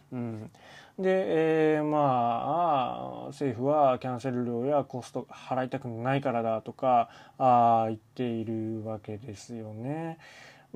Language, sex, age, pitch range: Japanese, male, 20-39, 120-155 Hz